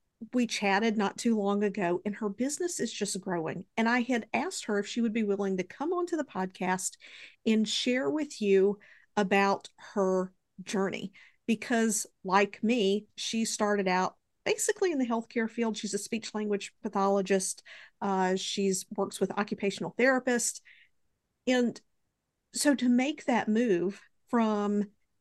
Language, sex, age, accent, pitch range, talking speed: English, female, 50-69, American, 195-230 Hz, 150 wpm